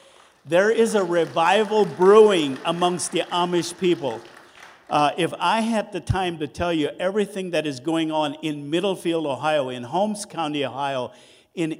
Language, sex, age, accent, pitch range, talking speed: English, male, 50-69, American, 150-195 Hz, 160 wpm